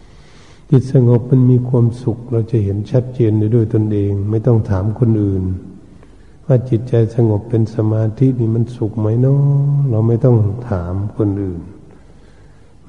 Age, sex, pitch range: 60-79, male, 105-120 Hz